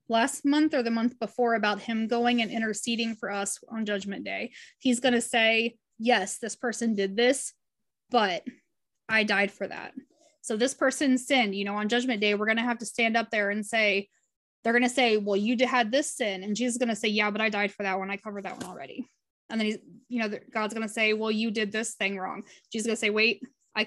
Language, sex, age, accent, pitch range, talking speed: English, female, 20-39, American, 210-245 Hz, 245 wpm